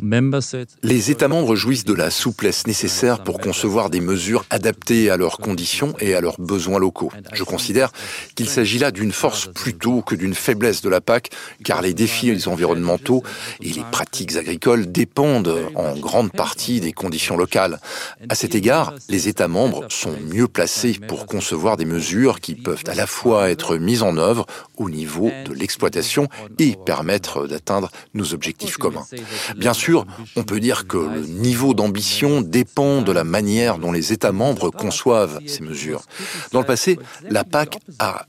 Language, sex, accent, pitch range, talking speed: English, male, French, 90-125 Hz, 170 wpm